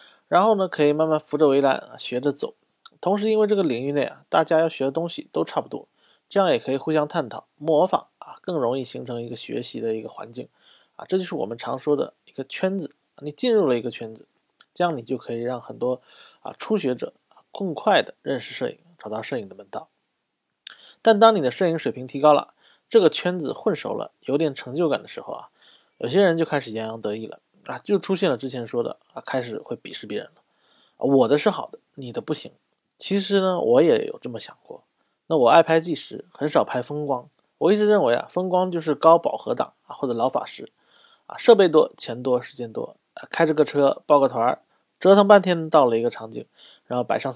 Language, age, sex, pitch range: Chinese, 20-39, male, 130-190 Hz